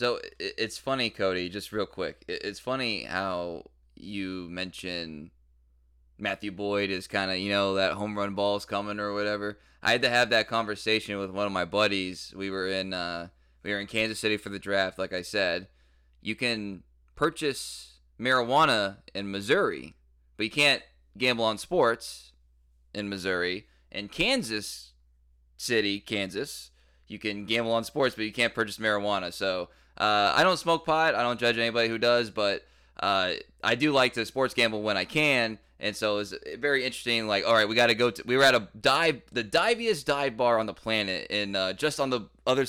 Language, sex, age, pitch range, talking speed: English, male, 20-39, 90-115 Hz, 185 wpm